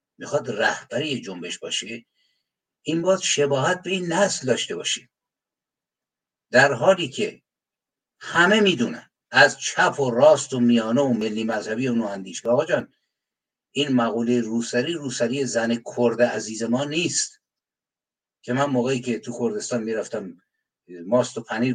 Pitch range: 115-160 Hz